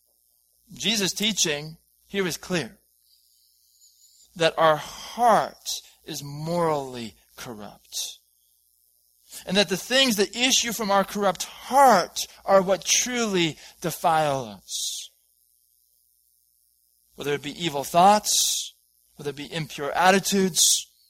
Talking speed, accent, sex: 100 wpm, American, male